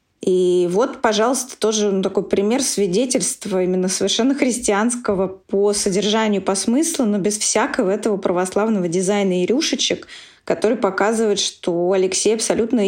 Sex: female